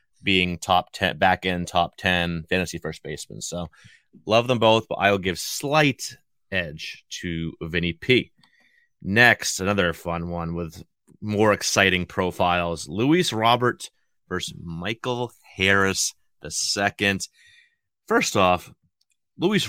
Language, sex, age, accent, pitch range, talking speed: English, male, 30-49, American, 95-115 Hz, 125 wpm